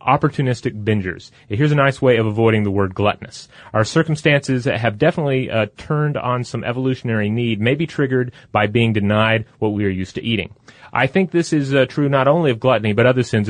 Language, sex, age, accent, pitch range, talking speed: English, male, 30-49, American, 110-140 Hz, 205 wpm